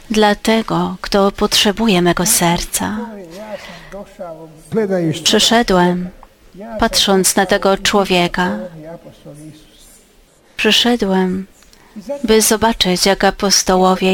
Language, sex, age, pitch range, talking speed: Polish, female, 30-49, 180-220 Hz, 65 wpm